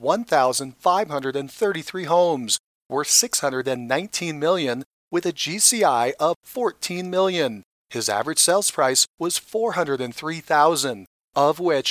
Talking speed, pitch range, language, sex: 95 wpm, 145-185 Hz, English, male